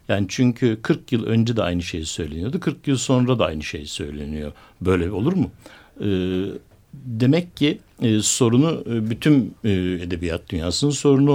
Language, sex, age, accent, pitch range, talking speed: Turkish, male, 60-79, native, 100-145 Hz, 145 wpm